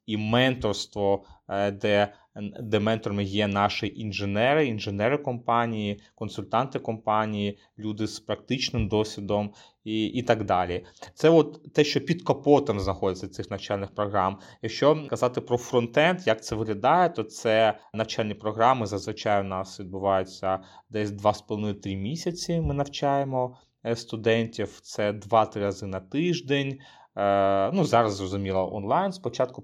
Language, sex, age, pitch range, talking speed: Ukrainian, male, 30-49, 100-125 Hz, 125 wpm